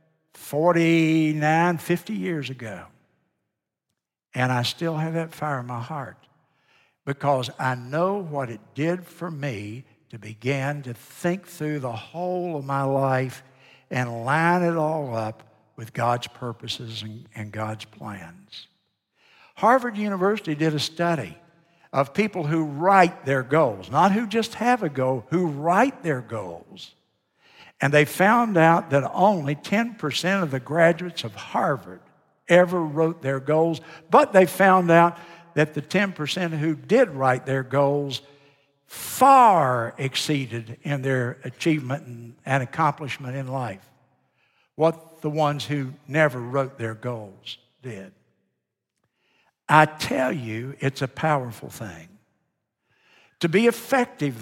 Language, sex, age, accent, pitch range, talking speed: English, male, 60-79, American, 130-170 Hz, 130 wpm